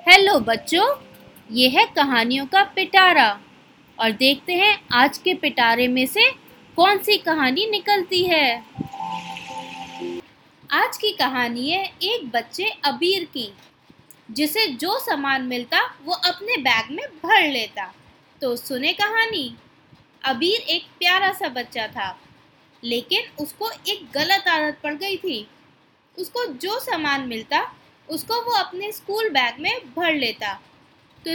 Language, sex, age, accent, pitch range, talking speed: Hindi, female, 20-39, native, 260-370 Hz, 130 wpm